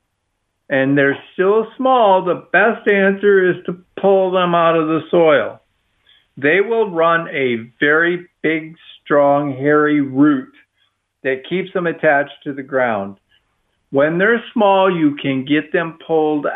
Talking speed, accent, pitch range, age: 140 wpm, American, 140-195 Hz, 50-69